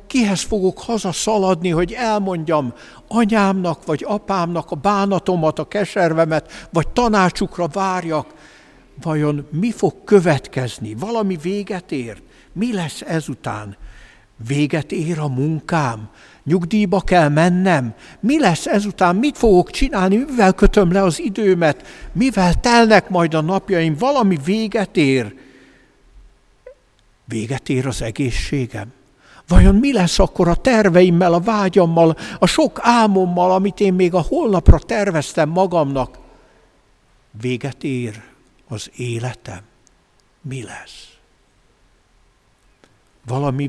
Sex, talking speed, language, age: male, 110 wpm, Hungarian, 60-79